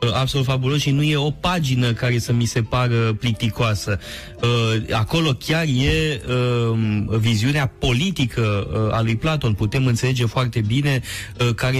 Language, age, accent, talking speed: Romanian, 20-39, native, 130 wpm